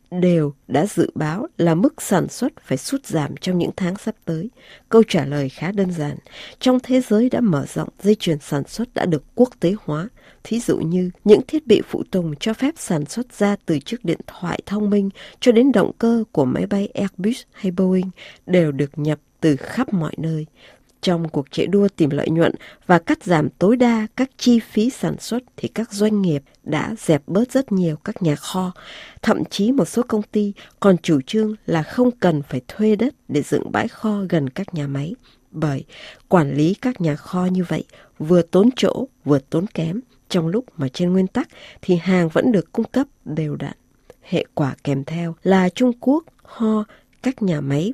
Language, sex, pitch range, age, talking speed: Vietnamese, female, 155-220 Hz, 20-39, 205 wpm